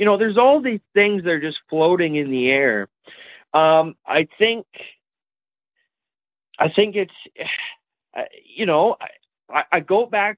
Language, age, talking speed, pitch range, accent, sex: English, 40-59, 145 wpm, 135-195 Hz, American, male